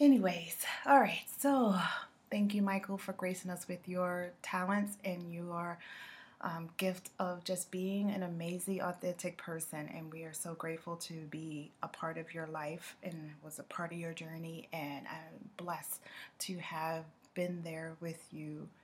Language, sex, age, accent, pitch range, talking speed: English, female, 20-39, American, 165-200 Hz, 165 wpm